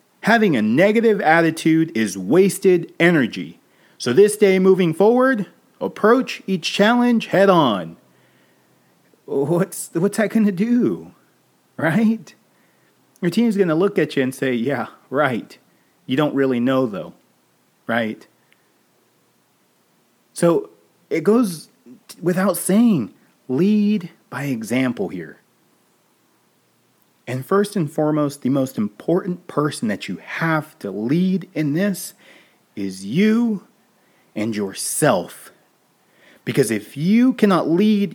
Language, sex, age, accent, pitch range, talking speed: English, male, 30-49, American, 145-210 Hz, 120 wpm